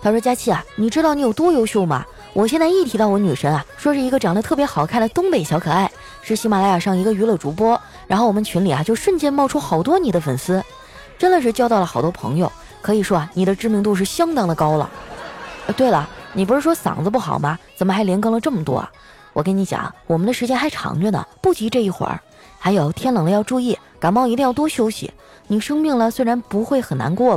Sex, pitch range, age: female, 170-235 Hz, 20-39